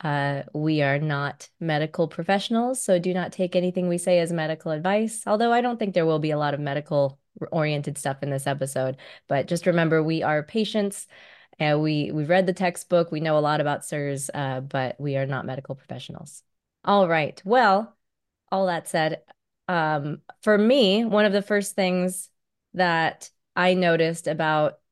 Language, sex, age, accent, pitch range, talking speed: English, female, 20-39, American, 150-185 Hz, 180 wpm